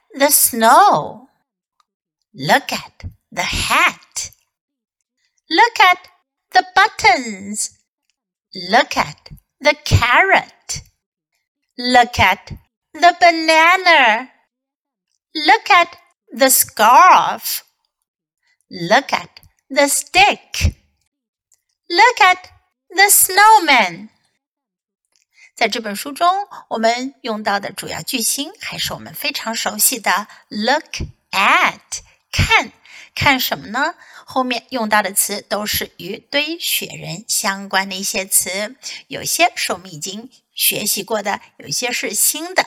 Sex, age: female, 60-79